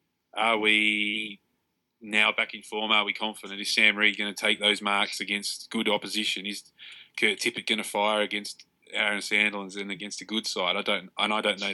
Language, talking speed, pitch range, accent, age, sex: English, 205 wpm, 100-110 Hz, Australian, 20-39, male